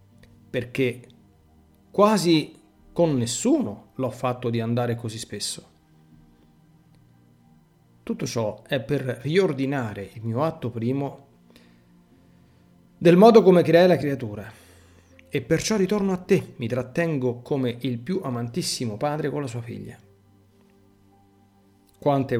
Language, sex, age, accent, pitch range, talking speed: Italian, male, 40-59, native, 100-150 Hz, 115 wpm